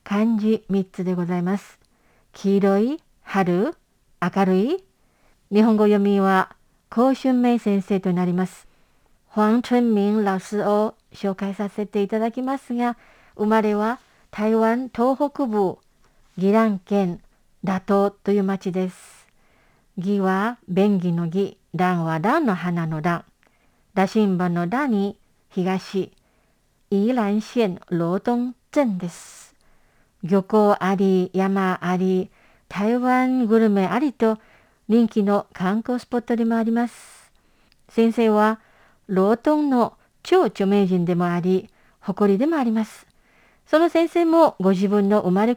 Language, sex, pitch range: Japanese, female, 195-230 Hz